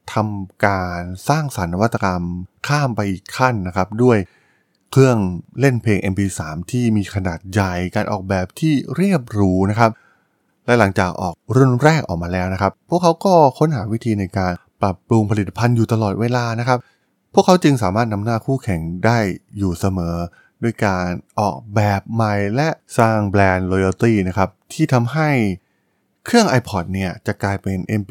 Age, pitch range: 20-39, 95-125 Hz